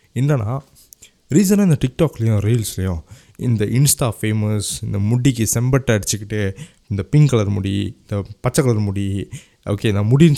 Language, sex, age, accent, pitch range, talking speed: Tamil, male, 20-39, native, 105-165 Hz, 135 wpm